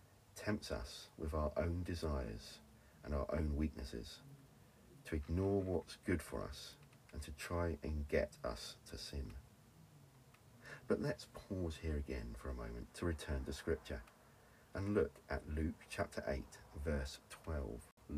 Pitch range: 70-85 Hz